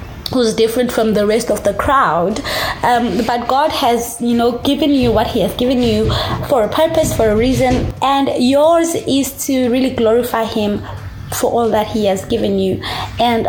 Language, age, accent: English, 20-39, South African